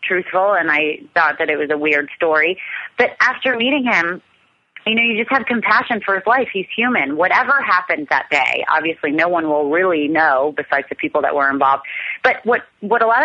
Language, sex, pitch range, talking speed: English, female, 165-220 Hz, 210 wpm